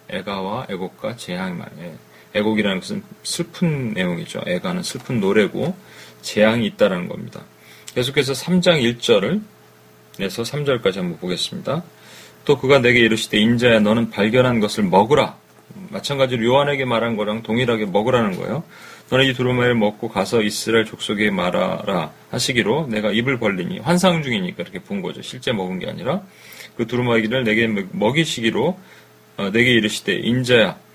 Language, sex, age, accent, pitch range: Korean, male, 30-49, native, 110-150 Hz